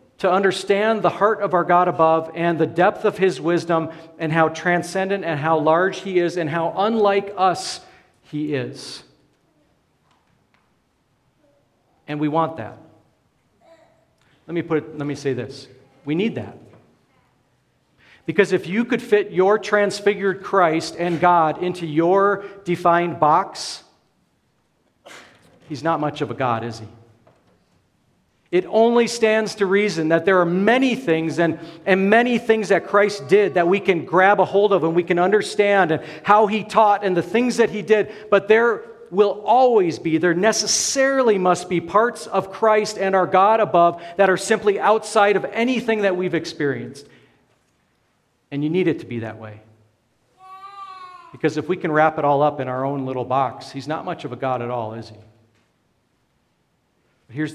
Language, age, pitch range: English, 50-69, 155-205 Hz